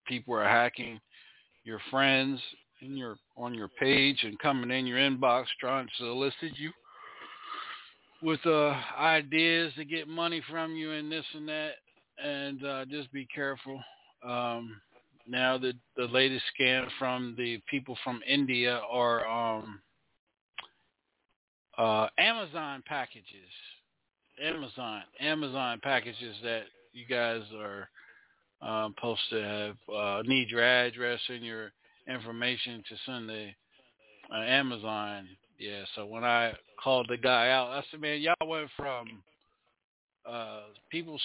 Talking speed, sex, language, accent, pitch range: 135 wpm, male, English, American, 120-155 Hz